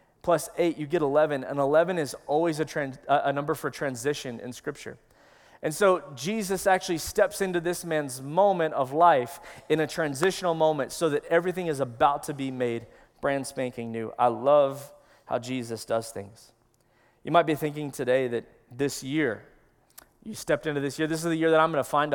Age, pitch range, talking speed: 20-39, 140-175 Hz, 185 wpm